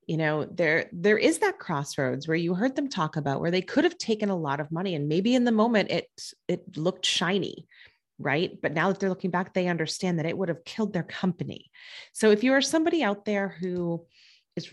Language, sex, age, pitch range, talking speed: English, female, 30-49, 150-210 Hz, 230 wpm